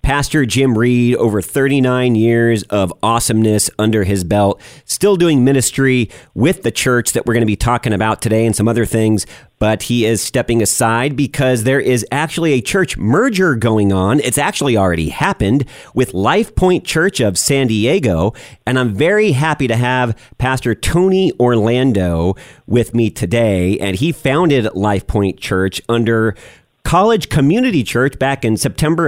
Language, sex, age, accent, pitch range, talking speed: English, male, 40-59, American, 110-140 Hz, 160 wpm